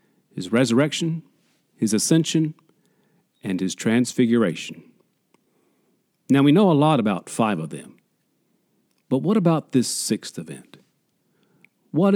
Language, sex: English, male